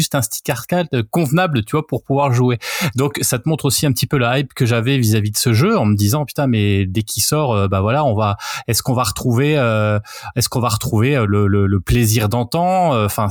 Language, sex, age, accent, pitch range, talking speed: French, male, 20-39, French, 110-150 Hz, 250 wpm